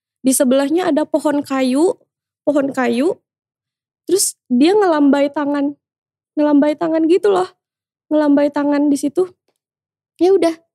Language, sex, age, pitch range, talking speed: Indonesian, female, 20-39, 240-310 Hz, 115 wpm